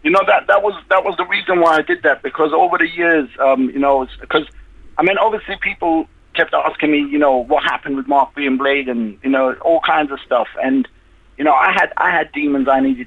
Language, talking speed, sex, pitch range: English, 245 wpm, male, 130-155 Hz